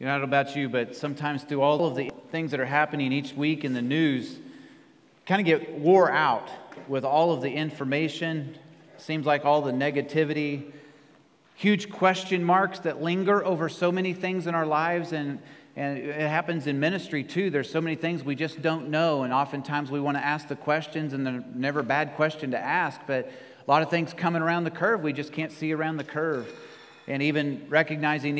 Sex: male